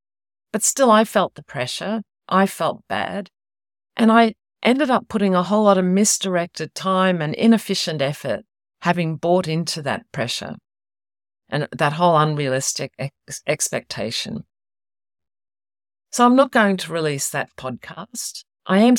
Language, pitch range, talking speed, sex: English, 140-210 Hz, 140 wpm, female